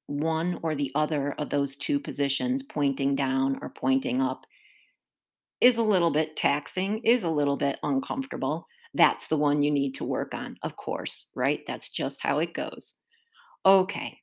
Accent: American